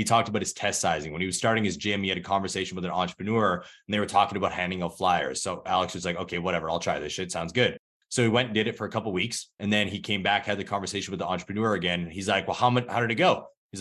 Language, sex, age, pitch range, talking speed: English, male, 20-39, 95-110 Hz, 310 wpm